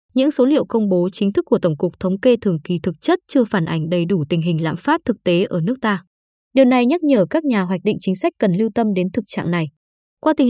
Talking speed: 280 wpm